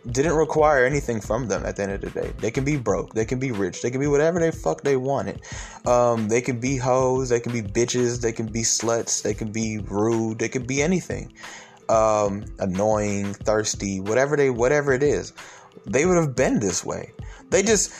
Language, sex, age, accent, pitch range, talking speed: English, male, 20-39, American, 115-160 Hz, 215 wpm